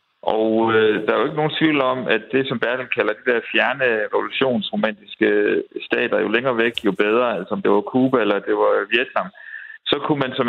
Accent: native